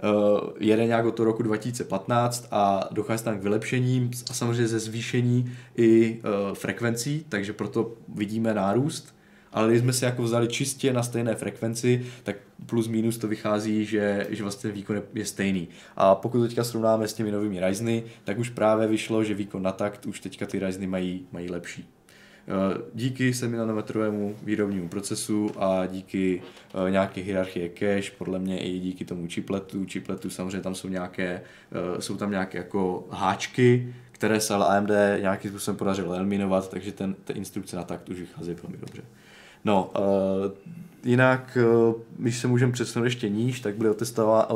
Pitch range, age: 100-115 Hz, 20-39